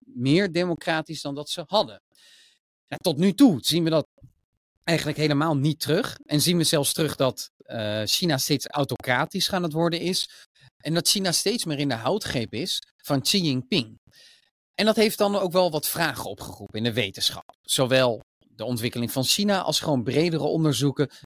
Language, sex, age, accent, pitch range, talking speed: Dutch, male, 40-59, Dutch, 125-175 Hz, 175 wpm